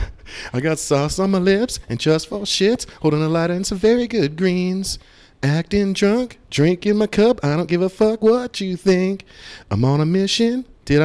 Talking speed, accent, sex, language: 195 wpm, American, male, English